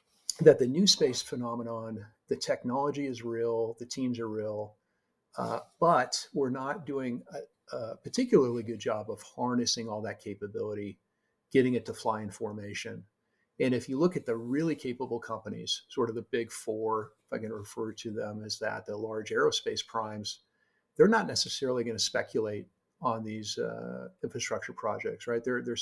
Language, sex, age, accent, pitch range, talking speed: English, male, 50-69, American, 110-130 Hz, 170 wpm